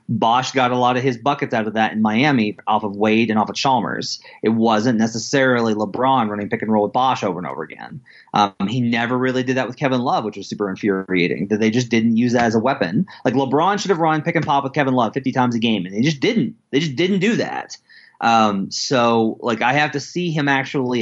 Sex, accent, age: male, American, 30-49